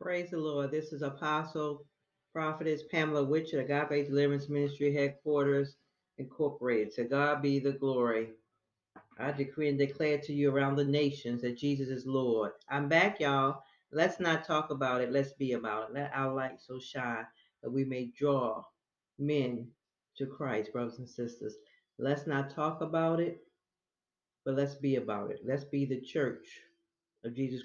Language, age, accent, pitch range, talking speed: English, 40-59, American, 130-145 Hz, 165 wpm